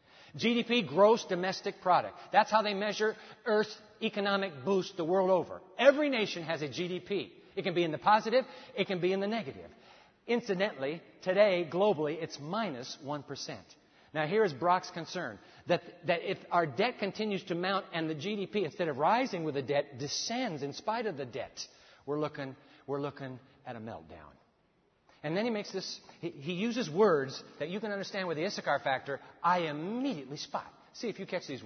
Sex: male